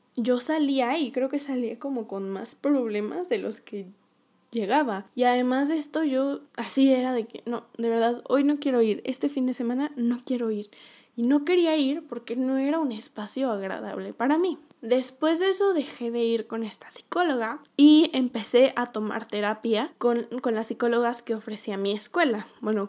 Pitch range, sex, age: 220-270 Hz, female, 10-29